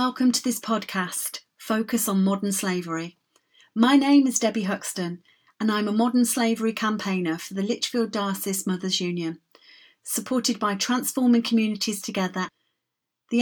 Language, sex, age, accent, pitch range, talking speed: English, female, 40-59, British, 190-230 Hz, 140 wpm